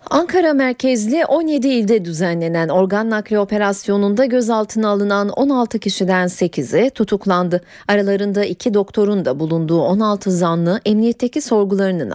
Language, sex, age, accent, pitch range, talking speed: Turkish, female, 40-59, native, 185-240 Hz, 115 wpm